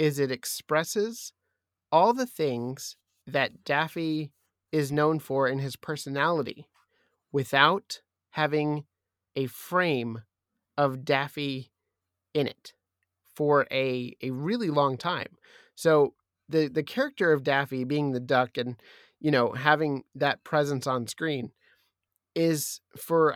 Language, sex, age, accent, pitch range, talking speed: English, male, 30-49, American, 130-155 Hz, 120 wpm